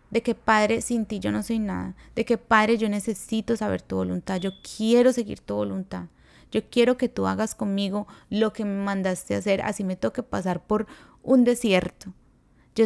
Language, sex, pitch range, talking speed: Spanish, female, 190-240 Hz, 195 wpm